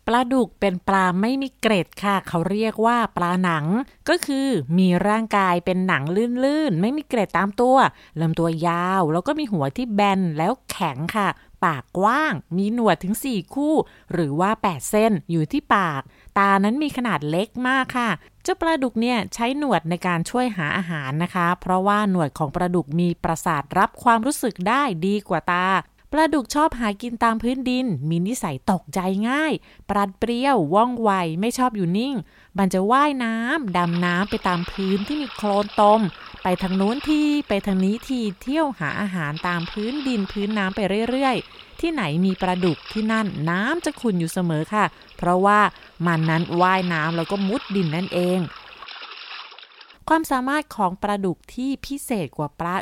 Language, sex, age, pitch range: Thai, female, 30-49, 180-240 Hz